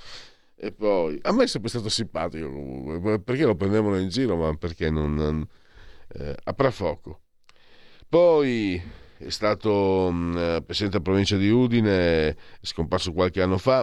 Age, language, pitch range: 50-69, Italian, 85-125 Hz